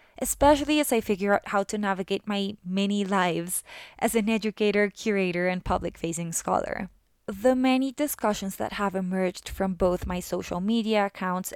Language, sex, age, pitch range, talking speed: English, female, 20-39, 185-235 Hz, 155 wpm